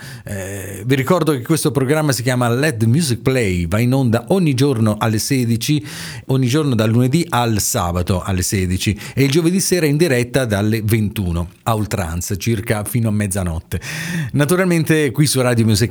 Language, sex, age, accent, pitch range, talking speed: Italian, male, 40-59, native, 100-130 Hz, 170 wpm